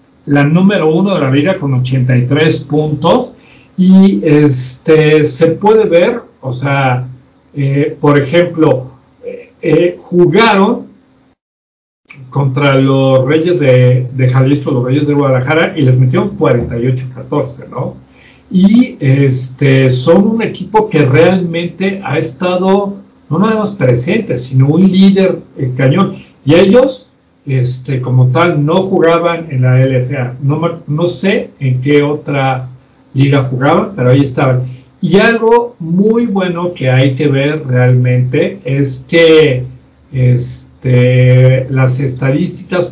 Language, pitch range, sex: Spanish, 130-175 Hz, male